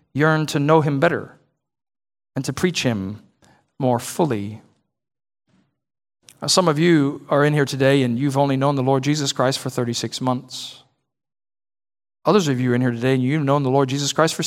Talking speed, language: 185 wpm, English